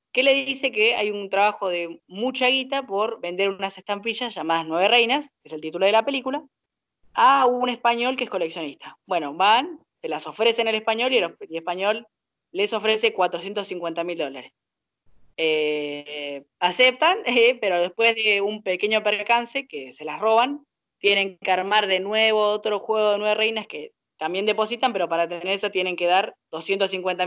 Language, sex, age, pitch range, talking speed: Spanish, female, 20-39, 175-235 Hz, 175 wpm